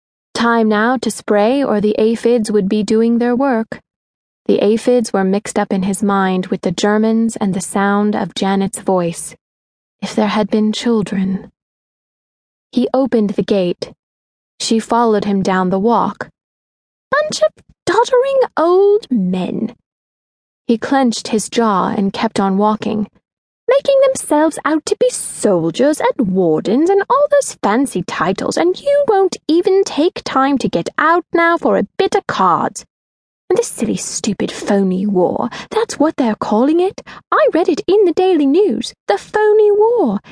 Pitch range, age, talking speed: 205-310 Hz, 20-39, 160 wpm